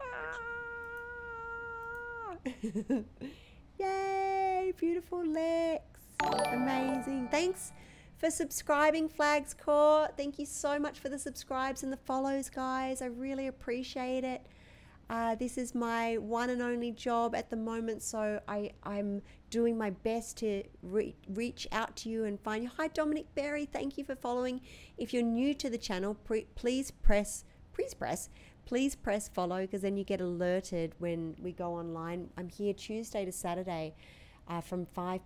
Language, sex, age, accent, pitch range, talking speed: English, female, 40-59, Australian, 180-280 Hz, 145 wpm